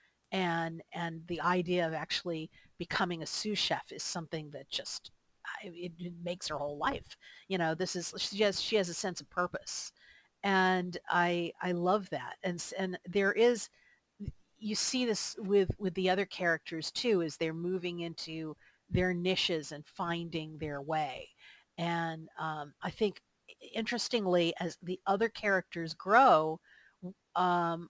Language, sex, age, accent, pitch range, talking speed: English, female, 50-69, American, 160-185 Hz, 155 wpm